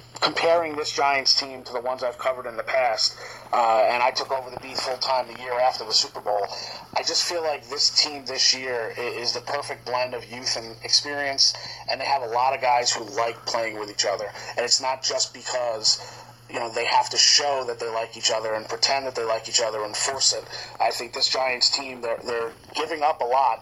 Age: 30-49